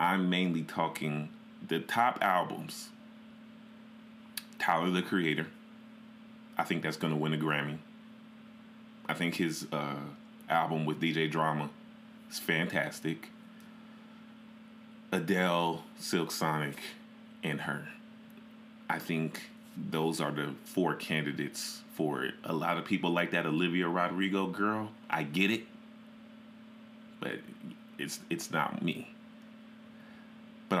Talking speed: 115 wpm